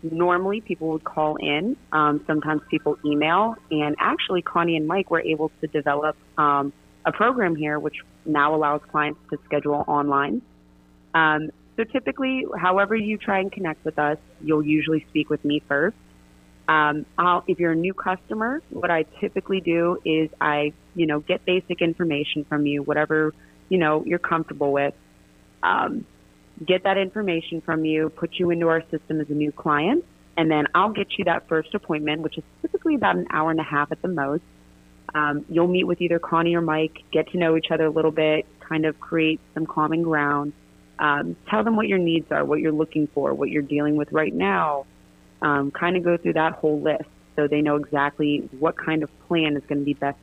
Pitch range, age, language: 150-170 Hz, 30-49, English